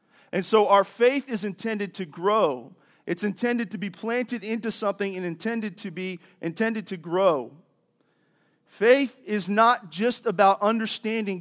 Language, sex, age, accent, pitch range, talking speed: English, male, 40-59, American, 185-230 Hz, 145 wpm